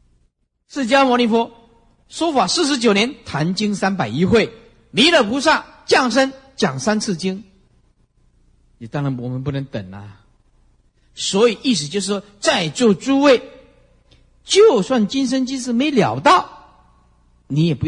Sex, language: male, Chinese